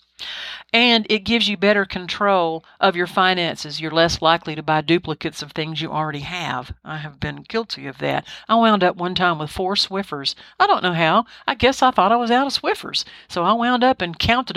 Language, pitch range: English, 165-230 Hz